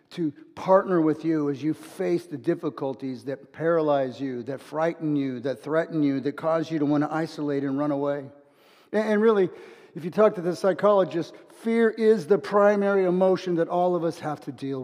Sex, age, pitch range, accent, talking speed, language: male, 50-69, 145-175 Hz, American, 195 wpm, English